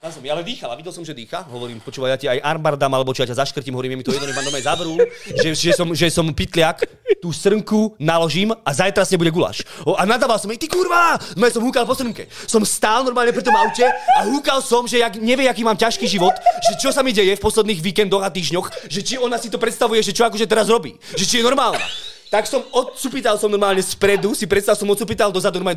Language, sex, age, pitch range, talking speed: Slovak, male, 20-39, 165-235 Hz, 250 wpm